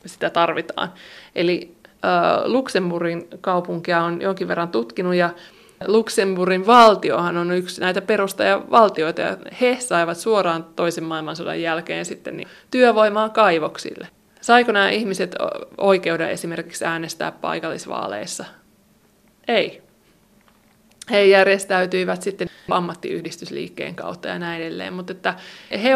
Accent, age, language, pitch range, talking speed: native, 20-39, Finnish, 175-195 Hz, 100 wpm